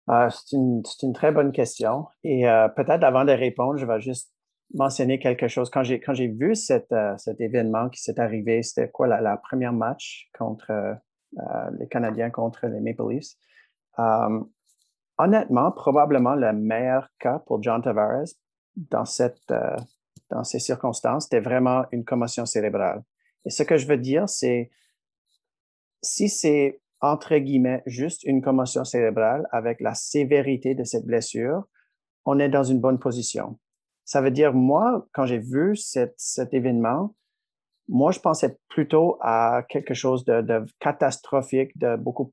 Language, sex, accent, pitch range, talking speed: French, male, Canadian, 120-140 Hz, 165 wpm